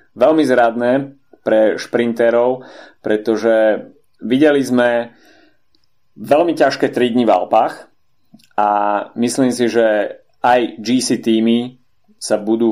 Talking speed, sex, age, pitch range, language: 105 wpm, male, 30-49, 105-115 Hz, Slovak